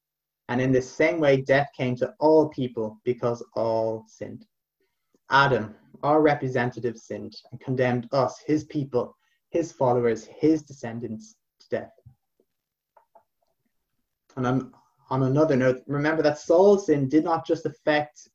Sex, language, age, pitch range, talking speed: male, English, 30-49, 120-150 Hz, 130 wpm